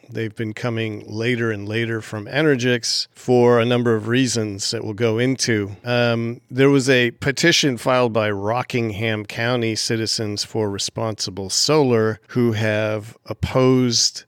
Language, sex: English, male